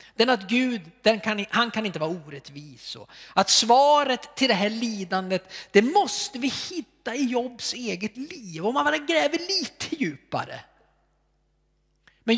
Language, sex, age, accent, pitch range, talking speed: Swedish, male, 40-59, native, 180-265 Hz, 150 wpm